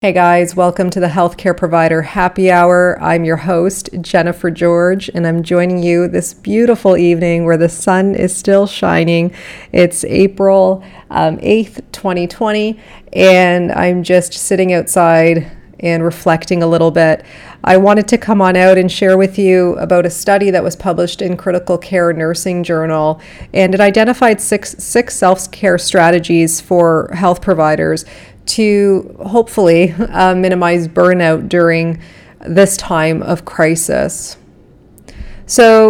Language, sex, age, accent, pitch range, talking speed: English, female, 30-49, American, 170-195 Hz, 140 wpm